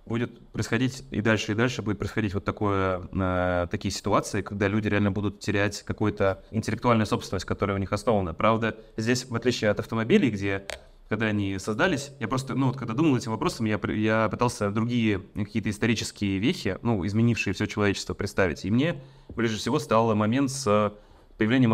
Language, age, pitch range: Russian, 20-39, 105-120 Hz